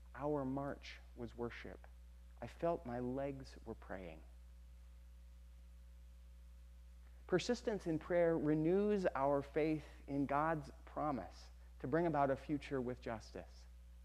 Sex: male